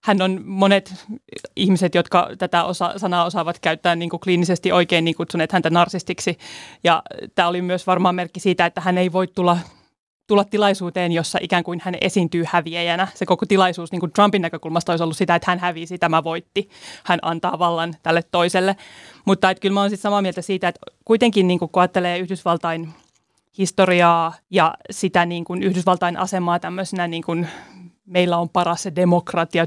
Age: 30-49